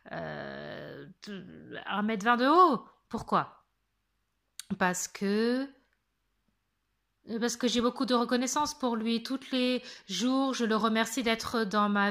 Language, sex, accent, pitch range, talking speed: English, female, French, 205-245 Hz, 120 wpm